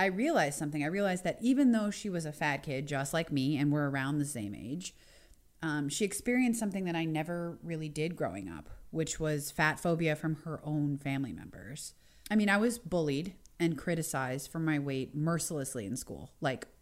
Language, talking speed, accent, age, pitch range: English, 200 wpm, American, 30-49, 140-180 Hz